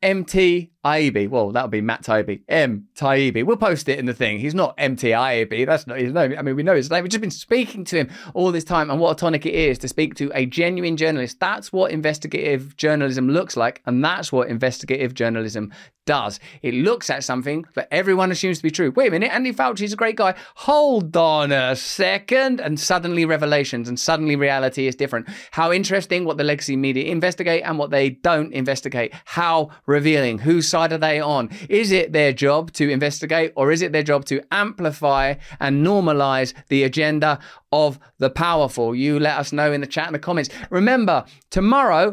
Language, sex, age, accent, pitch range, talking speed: English, male, 20-39, British, 140-190 Hz, 200 wpm